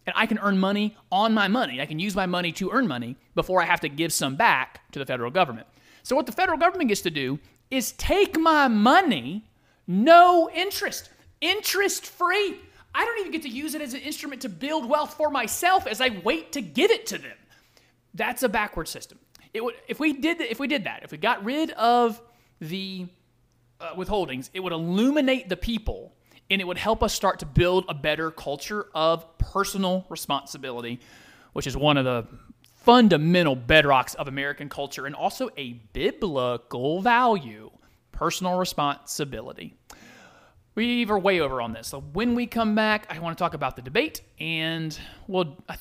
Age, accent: 30-49, American